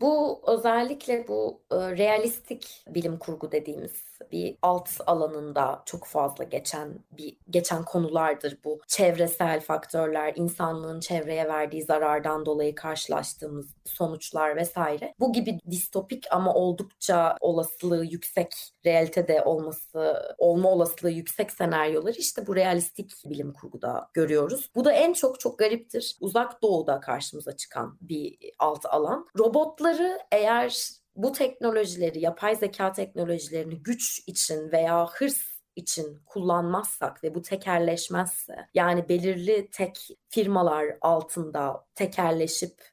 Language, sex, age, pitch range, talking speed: Turkish, female, 30-49, 160-215 Hz, 115 wpm